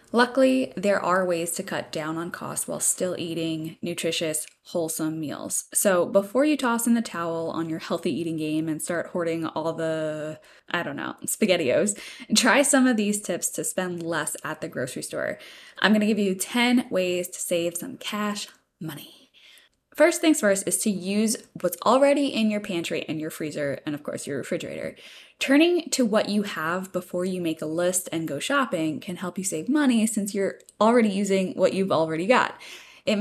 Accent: American